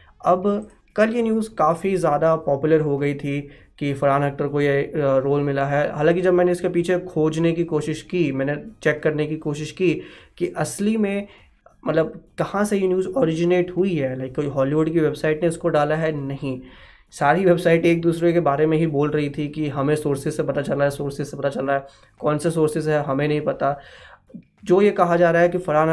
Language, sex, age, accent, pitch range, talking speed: Hindi, male, 20-39, native, 145-165 Hz, 215 wpm